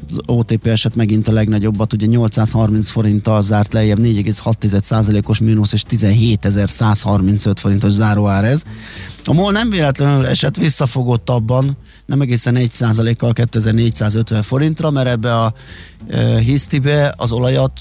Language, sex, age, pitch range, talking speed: Hungarian, male, 30-49, 105-125 Hz, 130 wpm